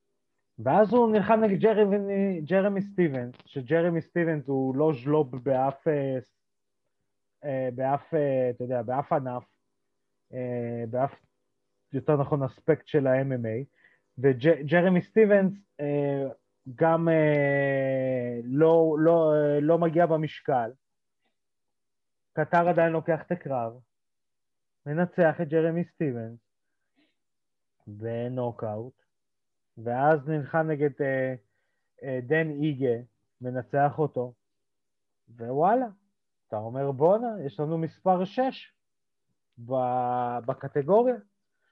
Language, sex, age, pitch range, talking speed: Hebrew, male, 30-49, 125-165 Hz, 85 wpm